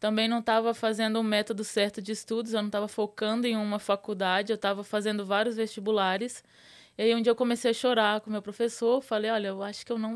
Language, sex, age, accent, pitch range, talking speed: Portuguese, female, 20-39, Brazilian, 205-240 Hz, 230 wpm